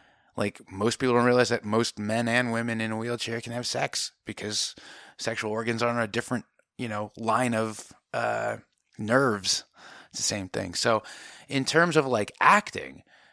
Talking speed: 175 wpm